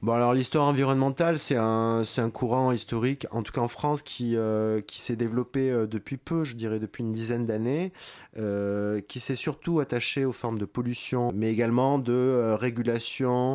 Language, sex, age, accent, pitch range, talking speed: French, male, 30-49, French, 105-135 Hz, 185 wpm